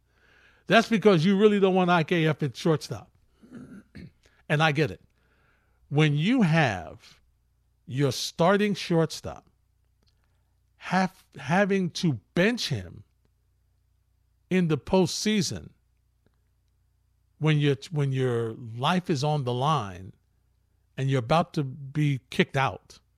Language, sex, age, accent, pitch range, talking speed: English, male, 50-69, American, 100-165 Hz, 115 wpm